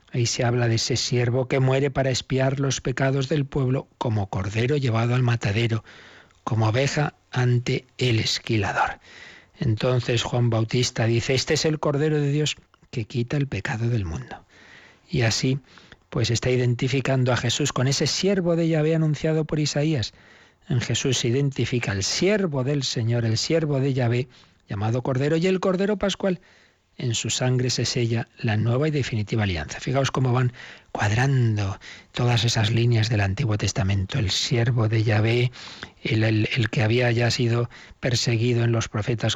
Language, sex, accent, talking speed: Spanish, male, Spanish, 165 wpm